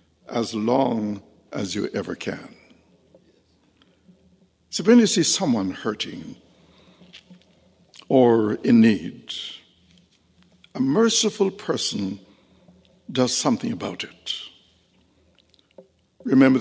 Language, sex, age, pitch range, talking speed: English, male, 60-79, 110-145 Hz, 85 wpm